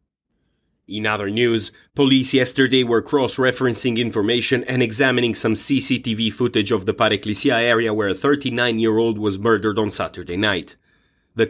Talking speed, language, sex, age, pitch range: 135 wpm, English, male, 30-49, 110-130 Hz